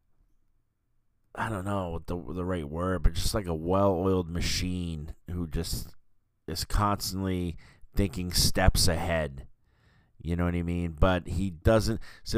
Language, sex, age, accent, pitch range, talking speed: English, male, 30-49, American, 85-105 Hz, 140 wpm